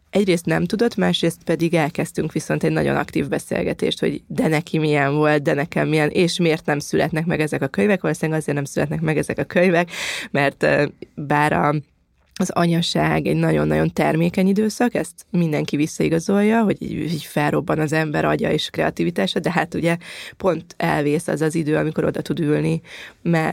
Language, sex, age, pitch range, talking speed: Hungarian, female, 20-39, 150-170 Hz, 175 wpm